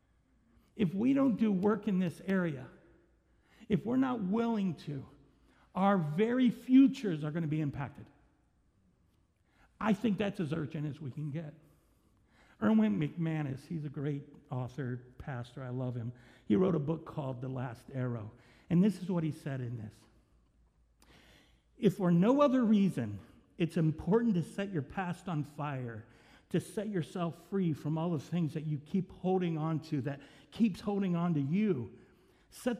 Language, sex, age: English, male, 60-79